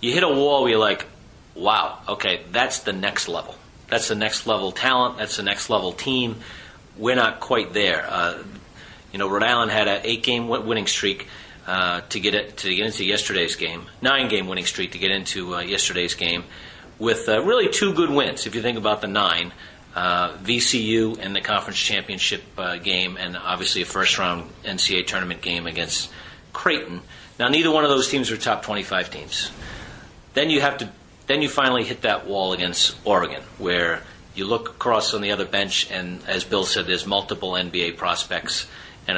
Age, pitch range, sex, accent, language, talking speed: 40-59, 95-120 Hz, male, American, English, 185 wpm